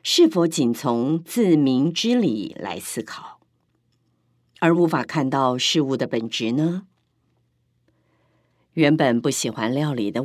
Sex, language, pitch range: female, Chinese, 125-175 Hz